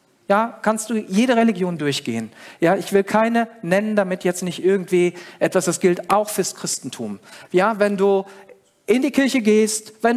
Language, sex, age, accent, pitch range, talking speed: German, male, 50-69, German, 155-205 Hz, 170 wpm